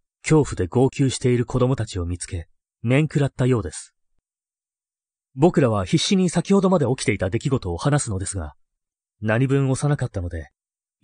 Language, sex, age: Japanese, male, 30-49